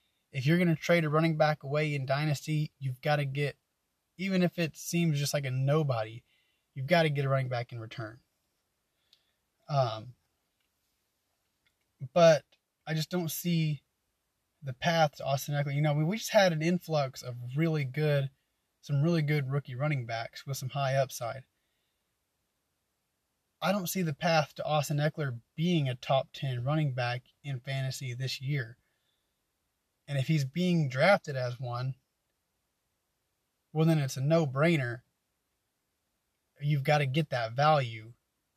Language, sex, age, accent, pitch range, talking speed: English, male, 20-39, American, 130-155 Hz, 155 wpm